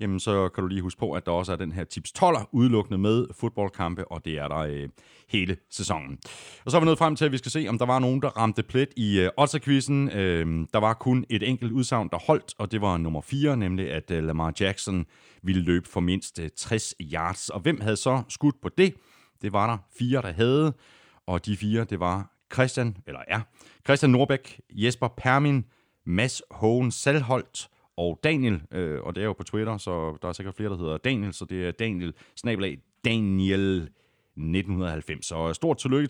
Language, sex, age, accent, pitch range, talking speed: Danish, male, 30-49, native, 90-125 Hz, 195 wpm